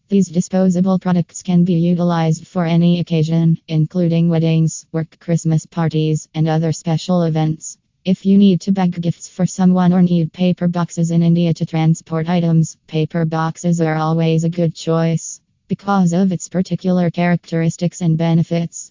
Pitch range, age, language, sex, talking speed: 165-180 Hz, 20-39, English, female, 155 wpm